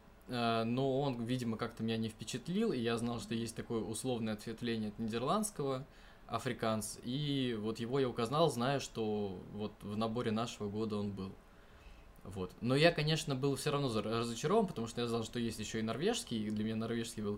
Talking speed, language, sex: 185 wpm, Russian, male